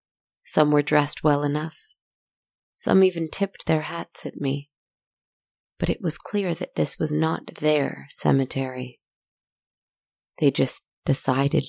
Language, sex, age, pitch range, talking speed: English, female, 30-49, 130-165 Hz, 130 wpm